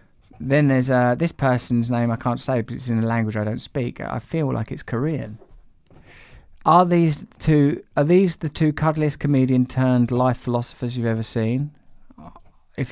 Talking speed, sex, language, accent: 180 wpm, male, English, British